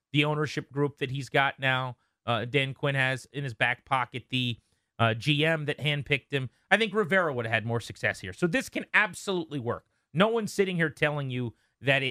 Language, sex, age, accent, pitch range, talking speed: English, male, 30-49, American, 125-175 Hz, 210 wpm